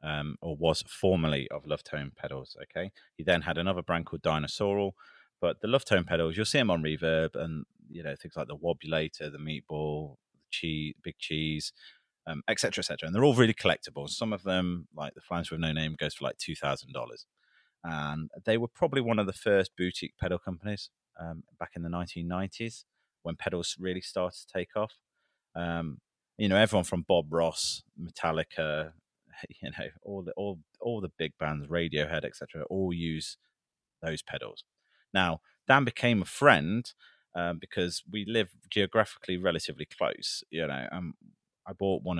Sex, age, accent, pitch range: male, 30-49, British, 80-95 Hz